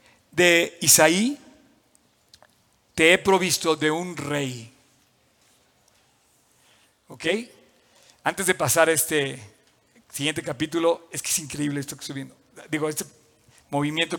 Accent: Mexican